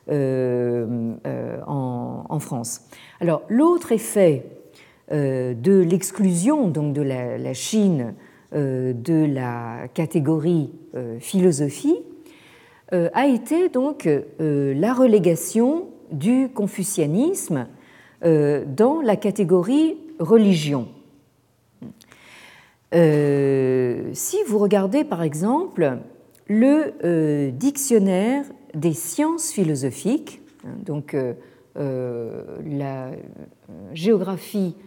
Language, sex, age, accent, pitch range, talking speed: French, female, 50-69, French, 140-220 Hz, 90 wpm